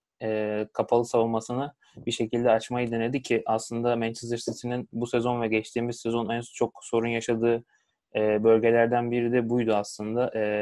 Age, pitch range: 20-39, 110-120 Hz